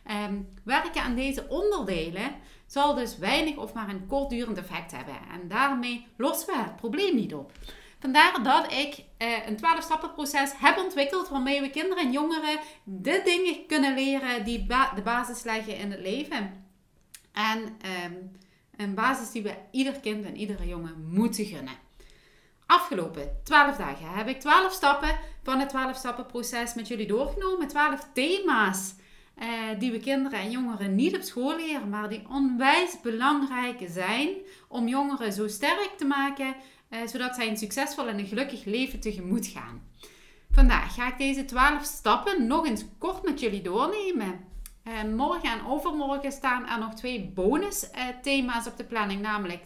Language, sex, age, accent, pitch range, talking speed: Dutch, female, 30-49, Dutch, 210-285 Hz, 165 wpm